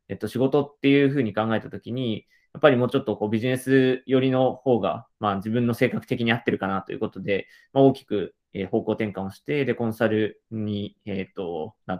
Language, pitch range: Japanese, 105-130 Hz